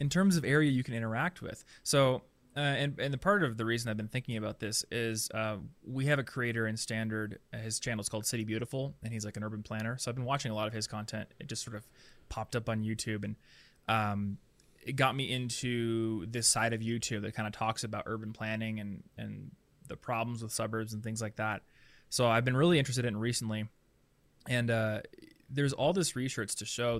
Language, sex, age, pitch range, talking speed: English, male, 20-39, 110-130 Hz, 225 wpm